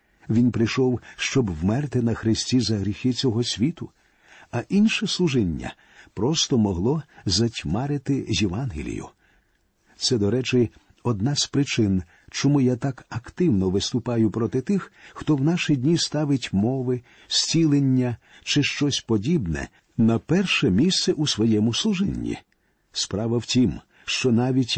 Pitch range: 115-145 Hz